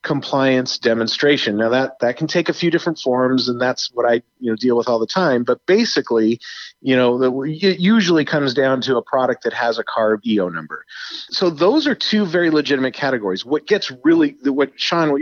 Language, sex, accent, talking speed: English, male, American, 210 wpm